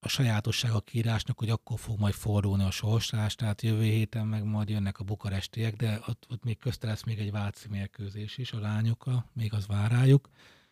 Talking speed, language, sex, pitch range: 195 wpm, Hungarian, male, 100-120 Hz